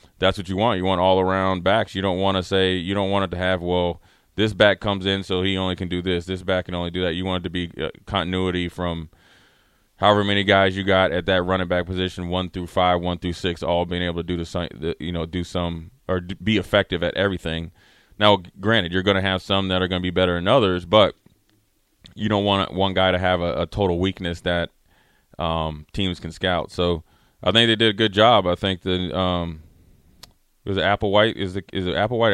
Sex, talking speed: male, 235 wpm